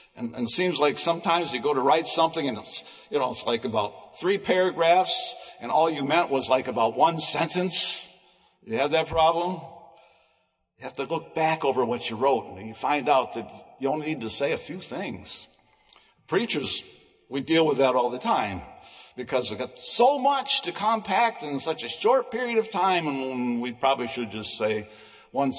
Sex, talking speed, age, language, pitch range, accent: male, 195 wpm, 60-79, English, 135-220 Hz, American